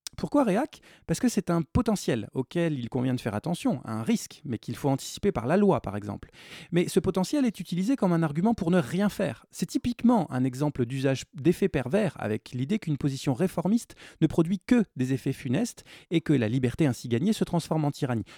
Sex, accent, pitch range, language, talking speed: male, French, 130-200 Hz, French, 210 wpm